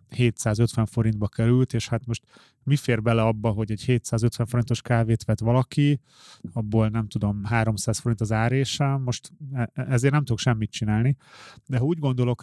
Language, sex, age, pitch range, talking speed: Hungarian, male, 30-49, 110-130 Hz, 165 wpm